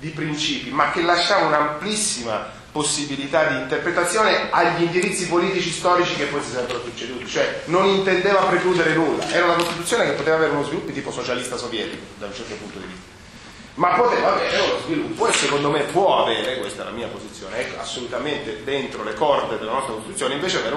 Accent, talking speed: native, 190 wpm